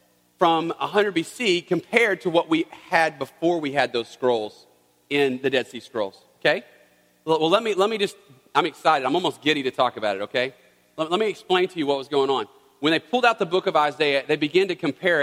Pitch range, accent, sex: 140-195 Hz, American, male